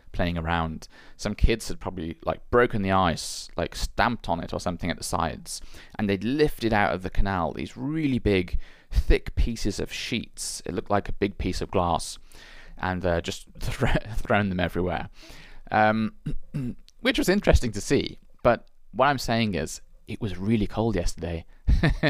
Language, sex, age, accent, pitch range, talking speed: English, male, 30-49, British, 85-115 Hz, 175 wpm